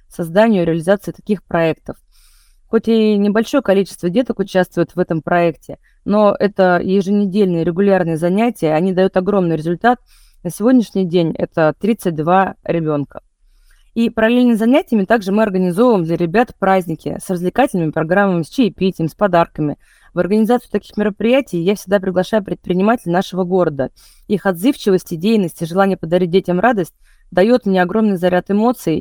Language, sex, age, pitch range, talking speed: Russian, female, 20-39, 175-210 Hz, 140 wpm